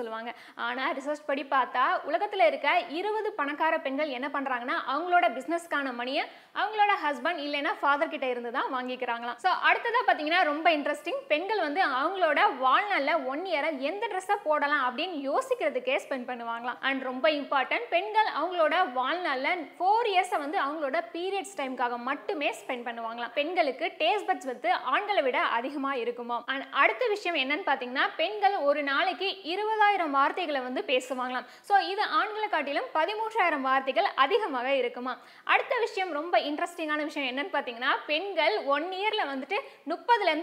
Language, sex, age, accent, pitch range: Tamil, female, 20-39, native, 270-360 Hz